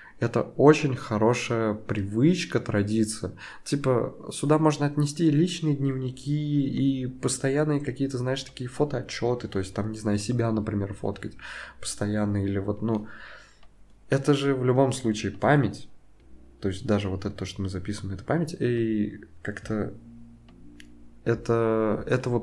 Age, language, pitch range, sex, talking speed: 20-39, Russian, 95-115 Hz, male, 130 wpm